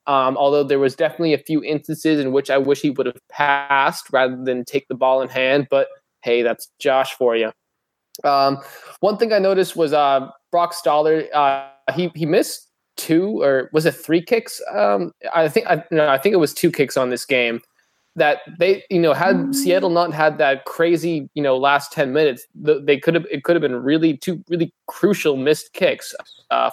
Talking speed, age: 205 wpm, 20-39